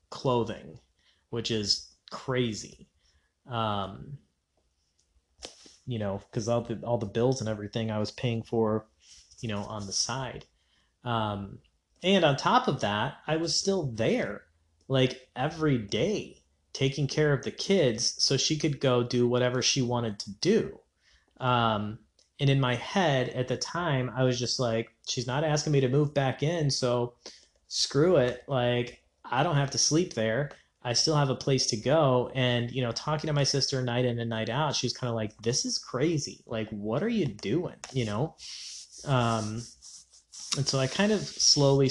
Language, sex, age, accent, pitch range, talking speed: English, male, 20-39, American, 110-135 Hz, 175 wpm